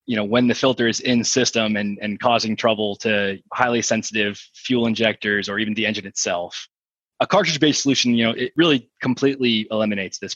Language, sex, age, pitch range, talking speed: English, male, 20-39, 105-120 Hz, 190 wpm